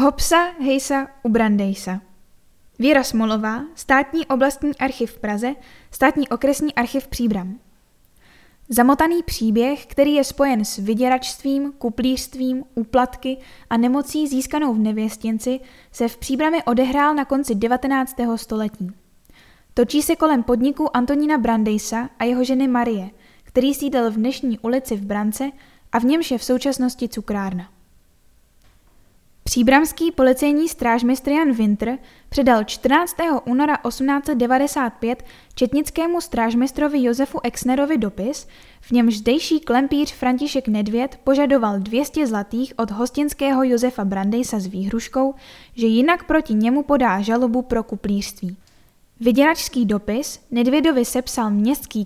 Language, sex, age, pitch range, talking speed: Czech, female, 10-29, 225-275 Hz, 120 wpm